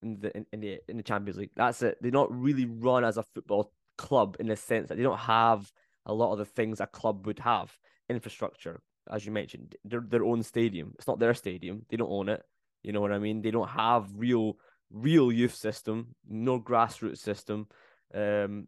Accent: British